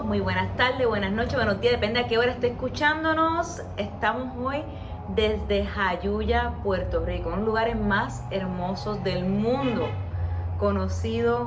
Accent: American